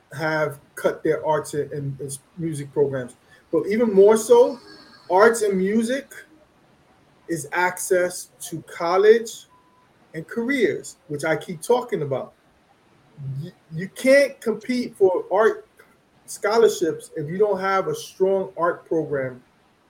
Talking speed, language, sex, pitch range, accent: 125 wpm, English, male, 160-215 Hz, American